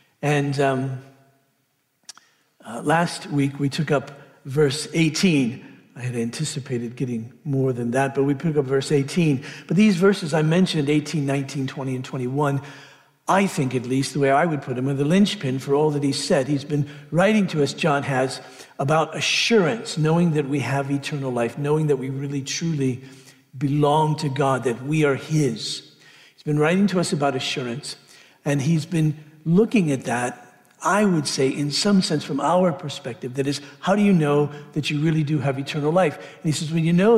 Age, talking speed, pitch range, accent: 60-79, 190 wpm, 140-165 Hz, American